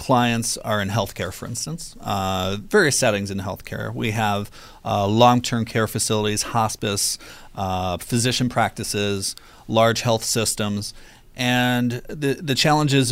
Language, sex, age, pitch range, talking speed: English, male, 40-59, 100-120 Hz, 135 wpm